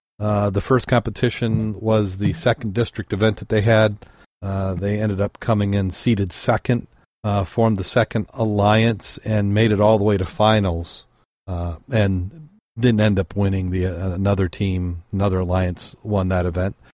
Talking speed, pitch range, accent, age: 170 wpm, 95-115 Hz, American, 40-59